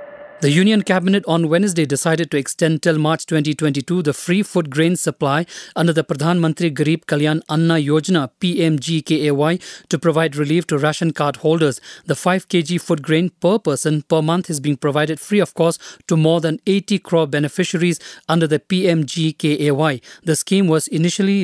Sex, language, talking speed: male, English, 165 wpm